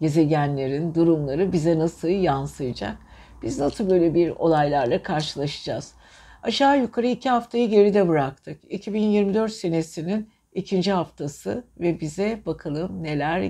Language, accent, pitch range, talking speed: Turkish, native, 155-215 Hz, 110 wpm